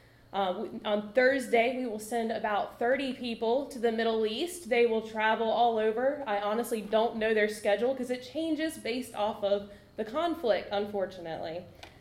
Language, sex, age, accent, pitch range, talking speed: English, female, 20-39, American, 215-255 Hz, 165 wpm